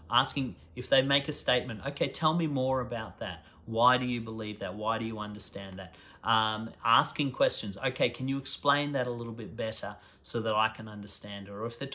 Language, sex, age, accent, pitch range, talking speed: English, male, 40-59, Australian, 100-125 Hz, 210 wpm